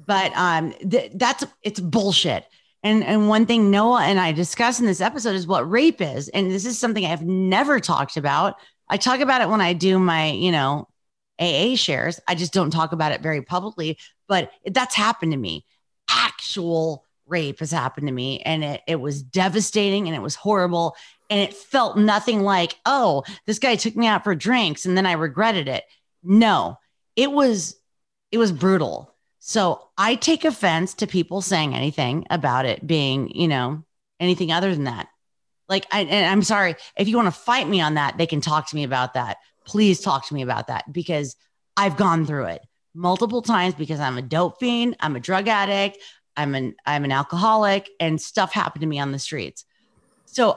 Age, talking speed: 30-49, 200 wpm